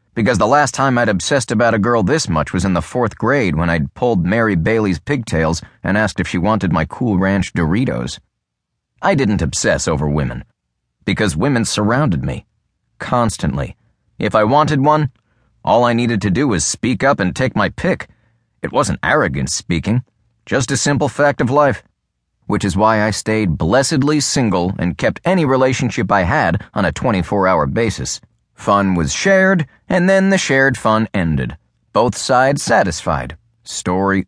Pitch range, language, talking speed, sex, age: 90-140 Hz, English, 170 wpm, male, 30-49